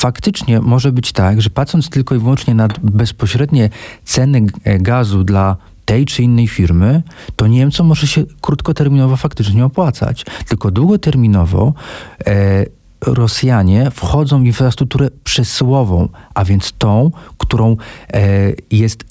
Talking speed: 115 wpm